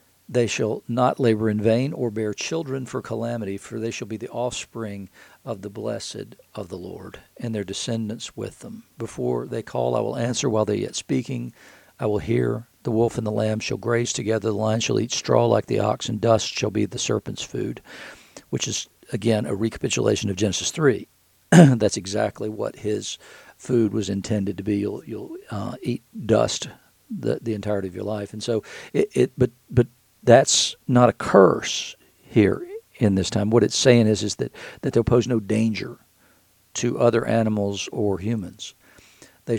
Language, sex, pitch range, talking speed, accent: English, male, 105-120 Hz, 185 wpm, American